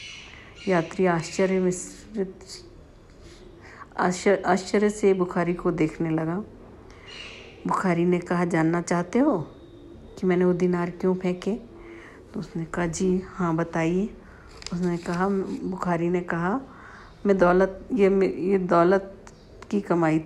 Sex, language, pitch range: female, Hindi, 165-190 Hz